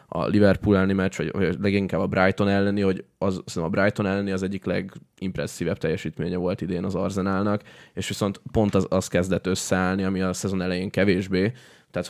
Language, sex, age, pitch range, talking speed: Hungarian, male, 20-39, 95-100 Hz, 180 wpm